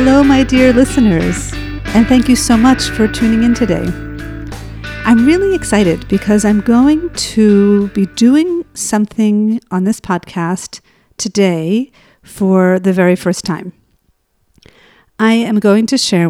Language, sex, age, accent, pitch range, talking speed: English, female, 50-69, American, 180-215 Hz, 135 wpm